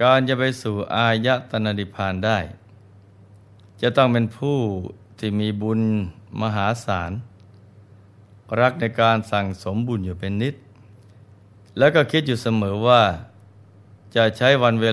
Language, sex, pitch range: Thai, male, 100-115 Hz